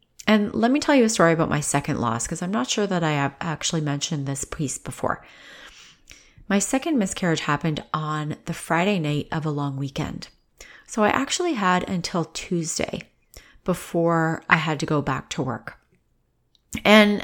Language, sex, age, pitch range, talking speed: English, female, 30-49, 155-205 Hz, 175 wpm